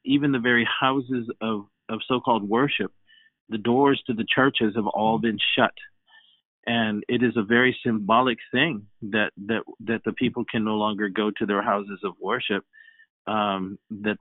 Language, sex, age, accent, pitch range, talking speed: English, male, 50-69, American, 105-130 Hz, 170 wpm